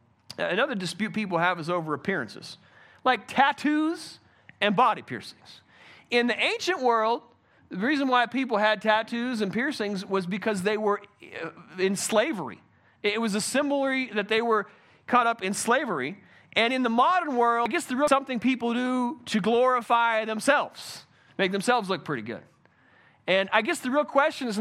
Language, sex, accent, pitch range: English, male, American, 185-240 Hz